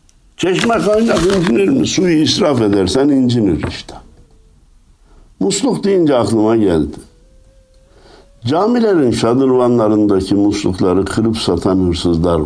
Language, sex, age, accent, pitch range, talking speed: Turkish, male, 60-79, native, 90-110 Hz, 90 wpm